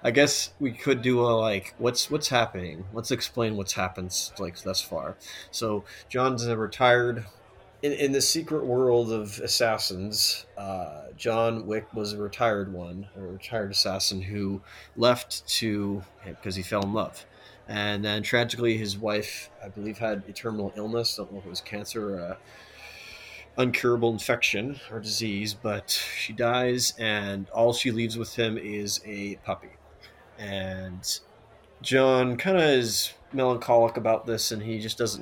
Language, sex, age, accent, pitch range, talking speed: English, male, 30-49, American, 100-120 Hz, 160 wpm